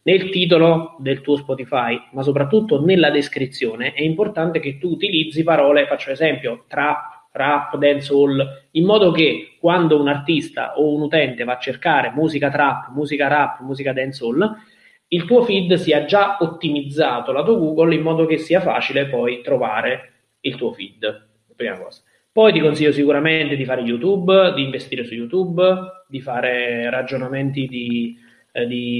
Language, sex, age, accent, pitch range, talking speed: Italian, male, 20-39, native, 145-165 Hz, 155 wpm